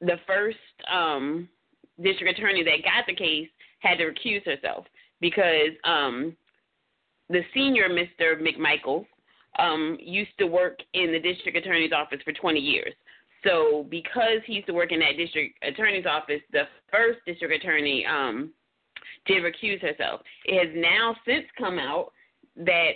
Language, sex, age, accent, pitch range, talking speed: English, female, 30-49, American, 160-195 Hz, 150 wpm